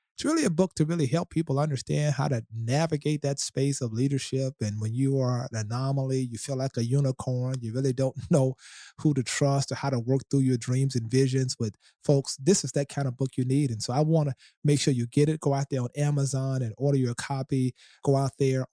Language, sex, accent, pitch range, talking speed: English, male, American, 125-145 Hz, 240 wpm